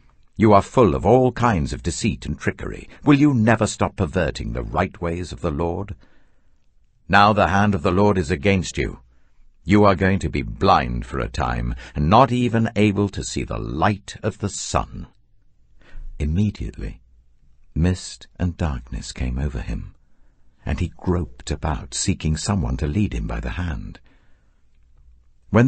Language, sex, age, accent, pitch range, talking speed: English, male, 60-79, British, 70-100 Hz, 165 wpm